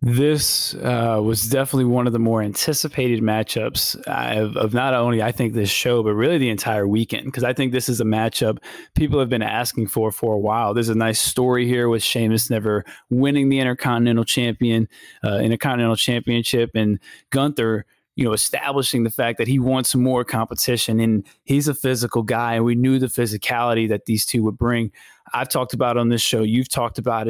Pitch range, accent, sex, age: 115-130 Hz, American, male, 20-39